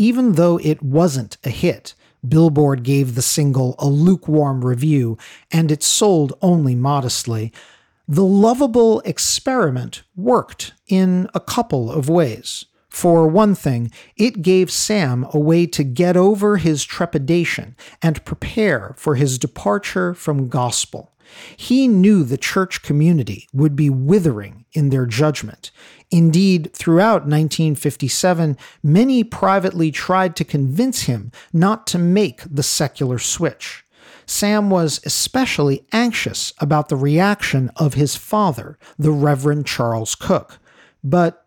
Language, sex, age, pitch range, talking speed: English, male, 40-59, 140-185 Hz, 125 wpm